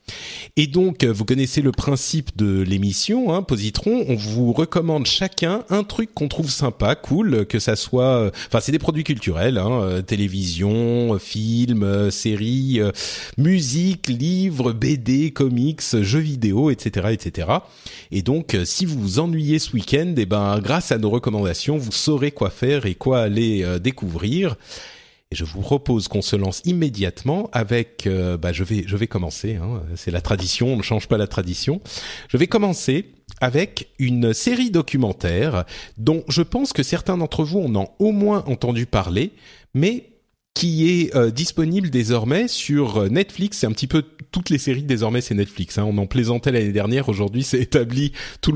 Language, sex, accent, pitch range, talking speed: French, male, French, 105-155 Hz, 175 wpm